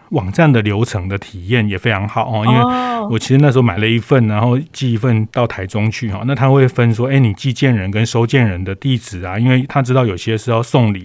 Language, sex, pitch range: Chinese, male, 110-130 Hz